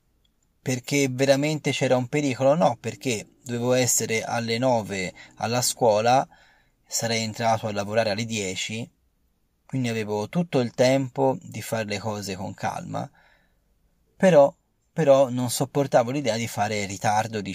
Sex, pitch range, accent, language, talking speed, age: male, 95-135 Hz, native, Italian, 135 wpm, 30-49